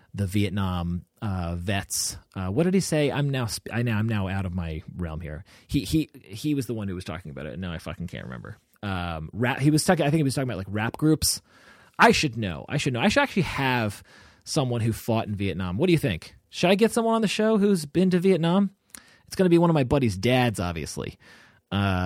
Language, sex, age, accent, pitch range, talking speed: English, male, 30-49, American, 90-135 Hz, 250 wpm